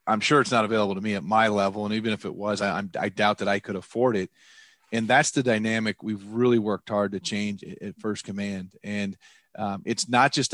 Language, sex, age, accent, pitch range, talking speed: English, male, 30-49, American, 105-120 Hz, 235 wpm